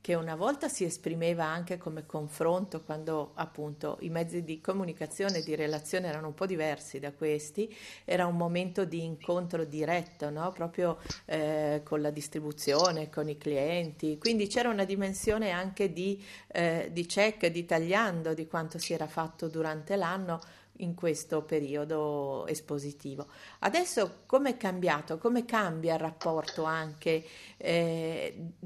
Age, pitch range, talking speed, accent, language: 50-69, 155-190 Hz, 140 wpm, native, Italian